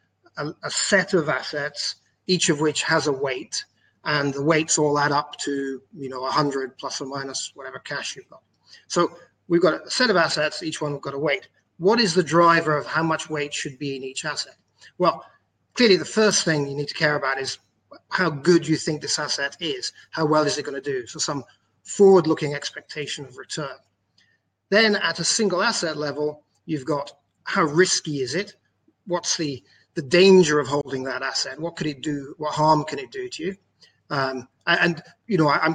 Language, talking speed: English, 200 wpm